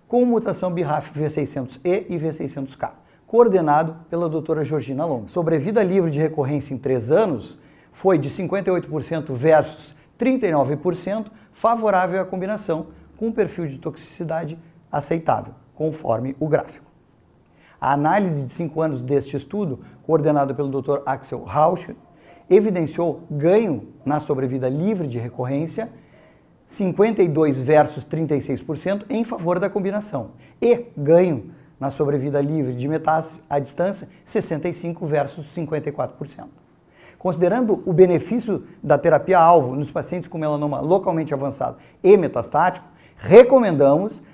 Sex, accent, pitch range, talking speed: male, Brazilian, 145-185 Hz, 115 wpm